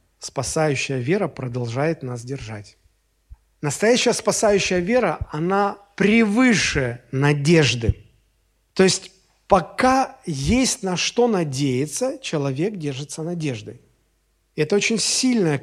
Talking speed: 90 wpm